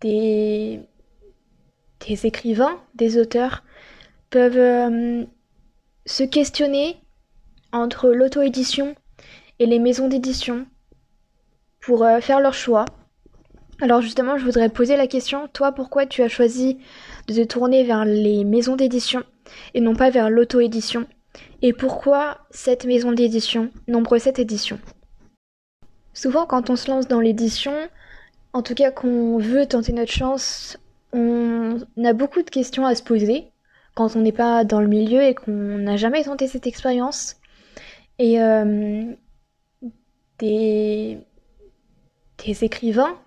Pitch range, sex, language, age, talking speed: 230-265 Hz, female, French, 20-39, 130 wpm